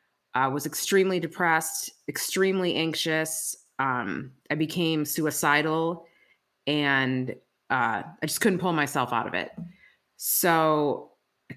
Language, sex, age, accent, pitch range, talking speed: English, female, 30-49, American, 145-175 Hz, 115 wpm